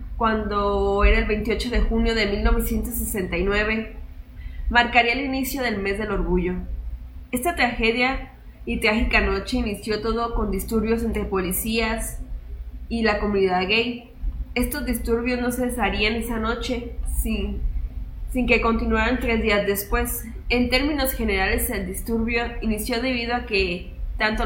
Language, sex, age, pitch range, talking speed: Spanish, female, 20-39, 200-240 Hz, 130 wpm